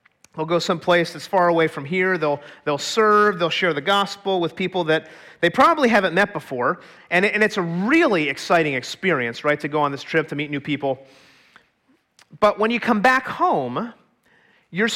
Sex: male